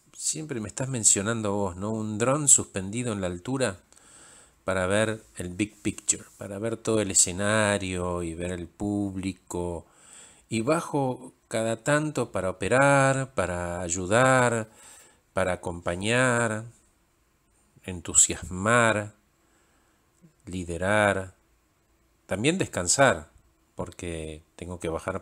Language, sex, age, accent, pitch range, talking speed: Spanish, male, 50-69, Argentinian, 90-120 Hz, 105 wpm